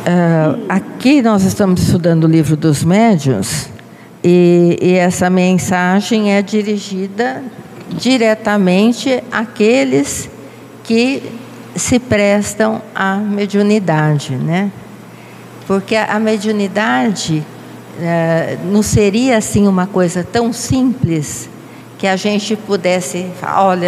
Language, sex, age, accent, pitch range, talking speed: Portuguese, female, 50-69, Brazilian, 170-215 Hz, 100 wpm